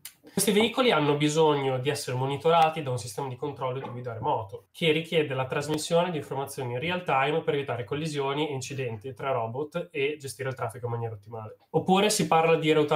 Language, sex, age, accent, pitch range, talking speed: Italian, male, 20-39, native, 125-155 Hz, 200 wpm